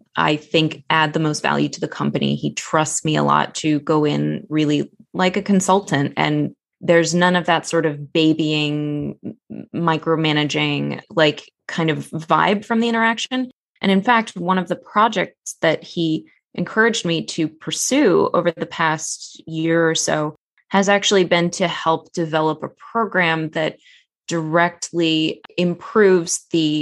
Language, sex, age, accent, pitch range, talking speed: English, female, 20-39, American, 155-195 Hz, 150 wpm